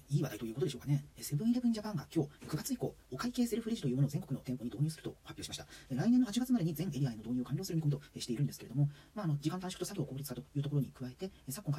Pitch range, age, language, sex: 130-190 Hz, 40-59, Japanese, male